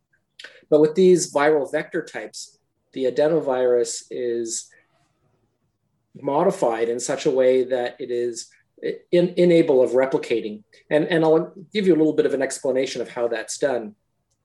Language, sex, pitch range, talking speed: English, male, 125-165 Hz, 145 wpm